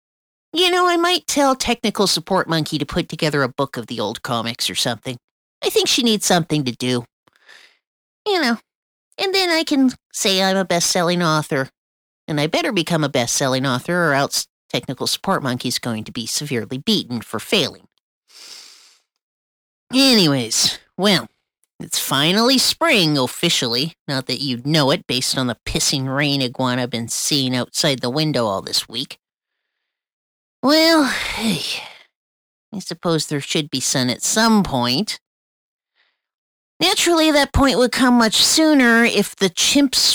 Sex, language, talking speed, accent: female, English, 150 wpm, American